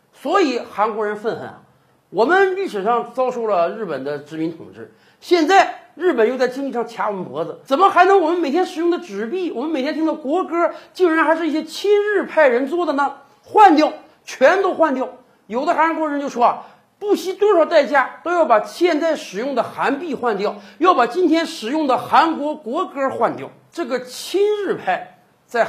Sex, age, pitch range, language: male, 50-69, 225-330 Hz, Chinese